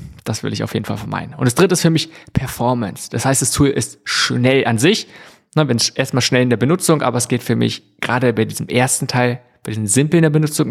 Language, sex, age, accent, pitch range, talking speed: German, male, 20-39, German, 115-130 Hz, 250 wpm